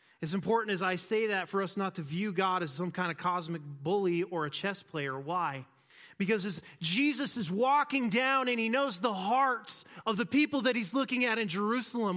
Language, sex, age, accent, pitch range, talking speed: English, male, 30-49, American, 140-175 Hz, 210 wpm